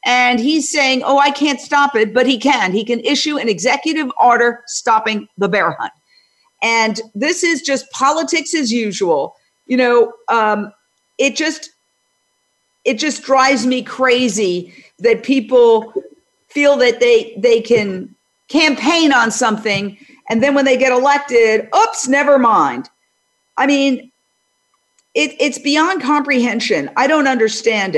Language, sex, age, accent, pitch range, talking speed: English, female, 50-69, American, 220-285 Hz, 140 wpm